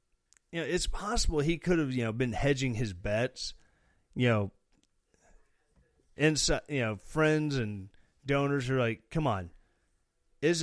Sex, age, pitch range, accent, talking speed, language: male, 30-49, 110-150 Hz, American, 145 wpm, English